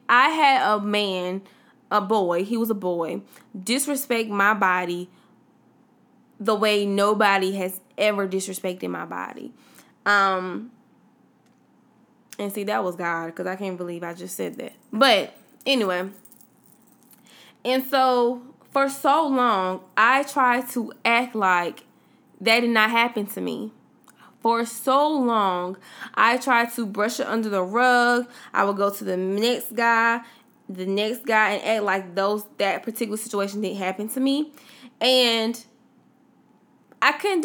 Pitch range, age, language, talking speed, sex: 195-250 Hz, 20-39, English, 140 wpm, female